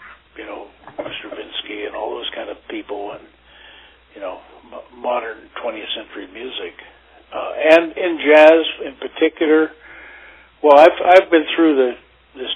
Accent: American